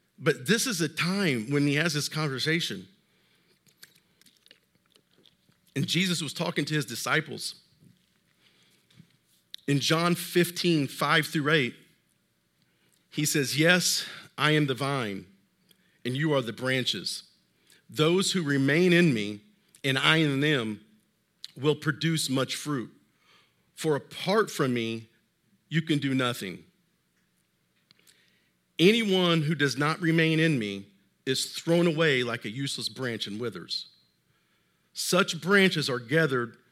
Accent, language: American, English